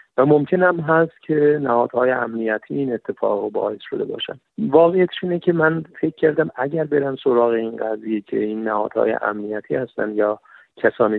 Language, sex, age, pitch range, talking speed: Persian, male, 50-69, 115-155 Hz, 155 wpm